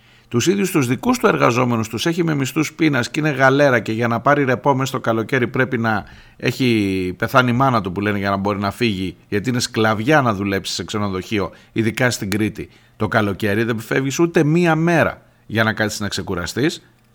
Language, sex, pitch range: Greek, male, 115-155 Hz